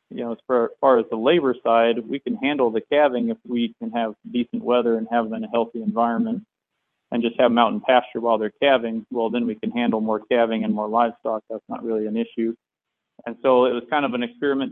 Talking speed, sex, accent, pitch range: 235 wpm, male, American, 115-125 Hz